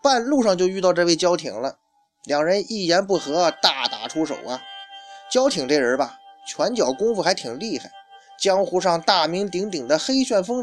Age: 20-39